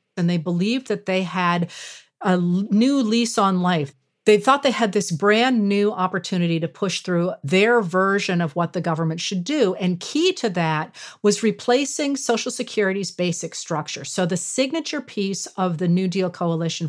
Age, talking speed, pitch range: 40-59, 180 wpm, 170-220 Hz